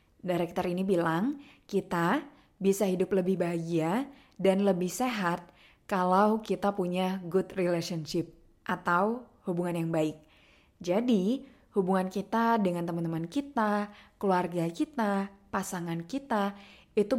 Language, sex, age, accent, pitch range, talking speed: Indonesian, female, 20-39, native, 180-220 Hz, 110 wpm